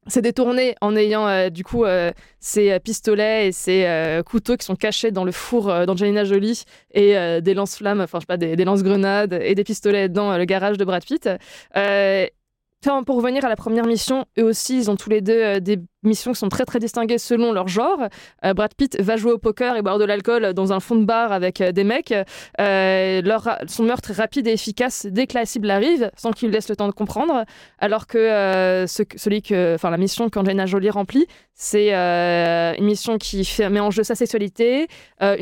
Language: French